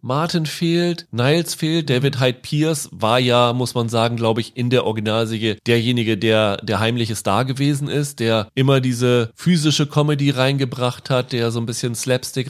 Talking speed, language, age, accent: 175 wpm, German, 30-49, German